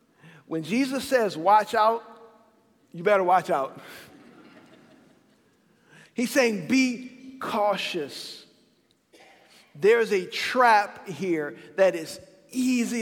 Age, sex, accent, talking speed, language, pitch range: 50-69, male, American, 90 wpm, English, 185-245 Hz